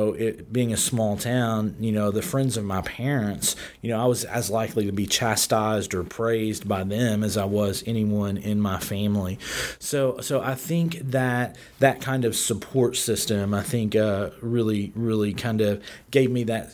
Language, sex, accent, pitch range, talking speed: English, male, American, 105-125 Hz, 185 wpm